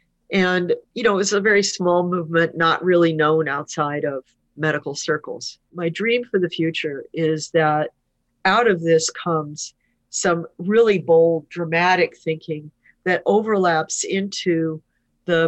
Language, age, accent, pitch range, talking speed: English, 50-69, American, 155-190 Hz, 135 wpm